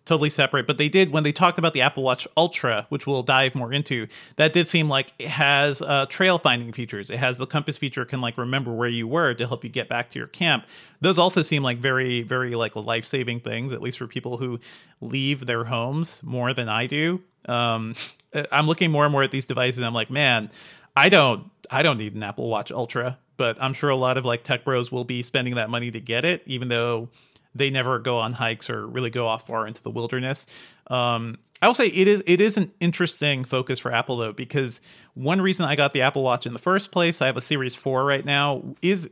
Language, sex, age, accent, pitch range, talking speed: English, male, 30-49, American, 120-145 Hz, 240 wpm